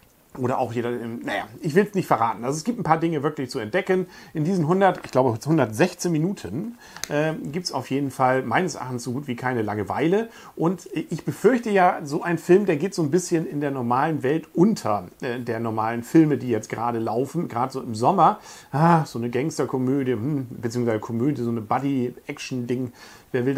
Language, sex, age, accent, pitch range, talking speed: German, male, 40-59, German, 120-165 Hz, 195 wpm